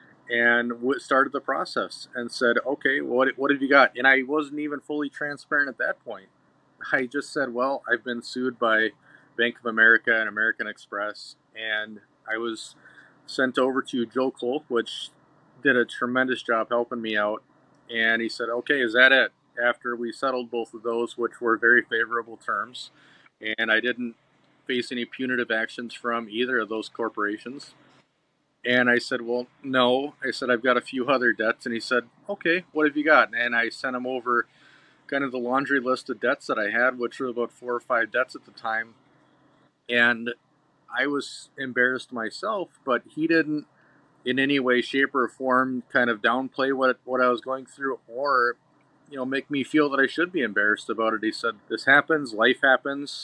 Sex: male